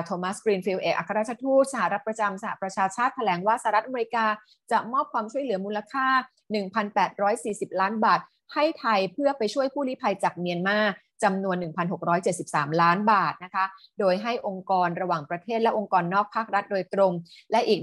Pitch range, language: 180-225 Hz, Thai